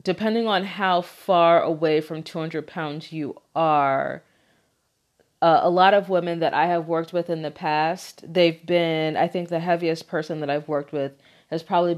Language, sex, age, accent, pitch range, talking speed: English, female, 30-49, American, 155-175 Hz, 180 wpm